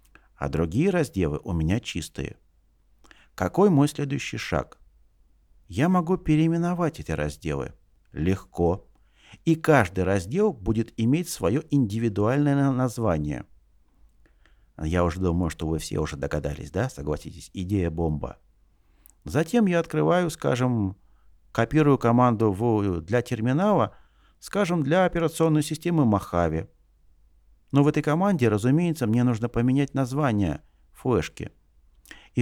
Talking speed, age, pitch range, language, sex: 110 wpm, 50-69, 85-140 Hz, Russian, male